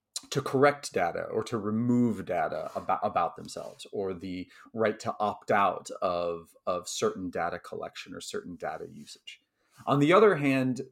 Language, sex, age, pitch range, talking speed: English, male, 30-49, 95-130 Hz, 160 wpm